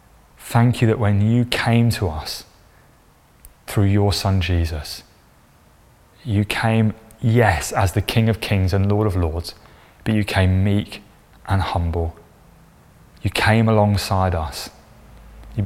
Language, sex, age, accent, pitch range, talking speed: English, male, 20-39, British, 90-110 Hz, 135 wpm